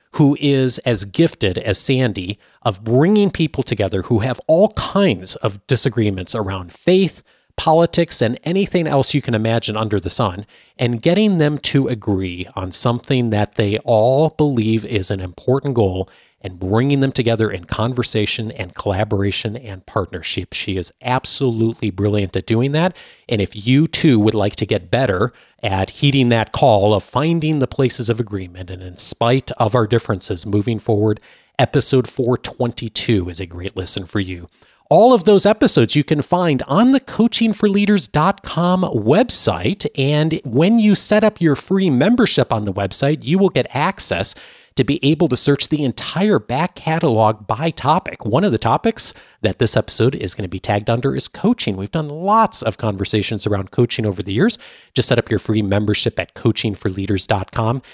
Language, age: English, 30-49